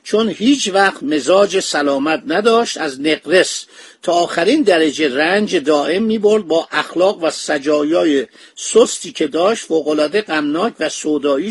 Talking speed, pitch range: 130 wpm, 150-200 Hz